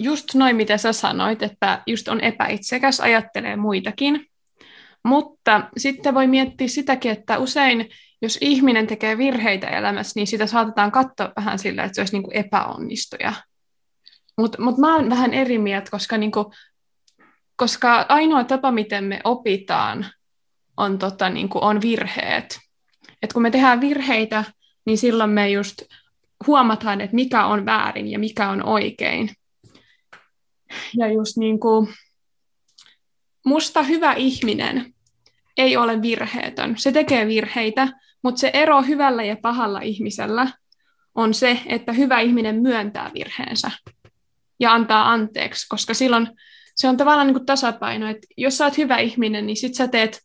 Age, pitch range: 20-39, 220-270 Hz